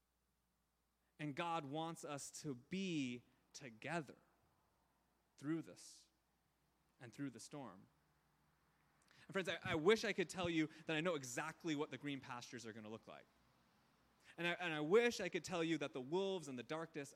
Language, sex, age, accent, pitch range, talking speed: English, male, 30-49, American, 120-165 Hz, 170 wpm